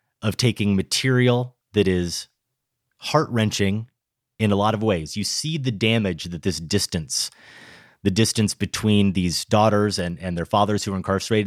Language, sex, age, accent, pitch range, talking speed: English, male, 30-49, American, 95-115 Hz, 155 wpm